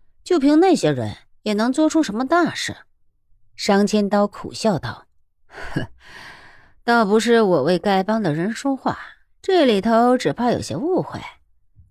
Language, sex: Chinese, female